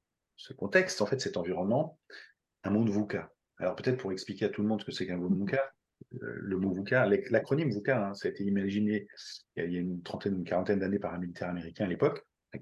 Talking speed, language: 240 wpm, French